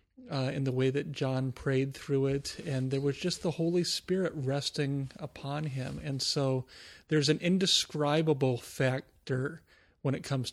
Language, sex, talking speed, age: English, male, 160 wpm, 30-49